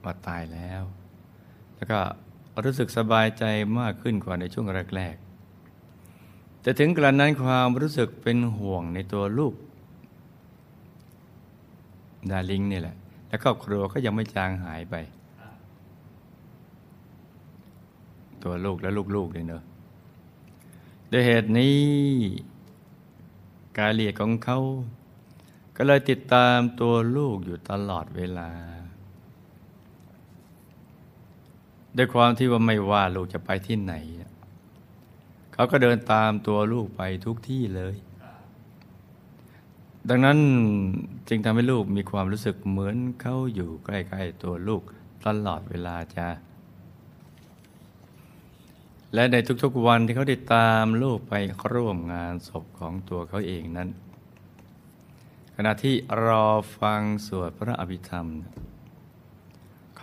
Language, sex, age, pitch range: Thai, male, 60-79, 90-120 Hz